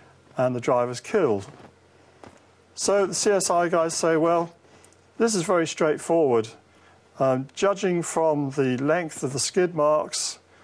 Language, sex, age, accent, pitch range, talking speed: English, male, 50-69, British, 130-165 Hz, 130 wpm